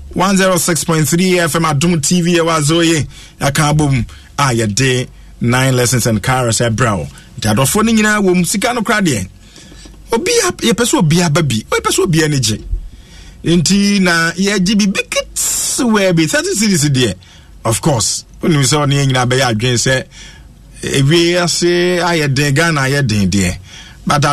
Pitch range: 105-160 Hz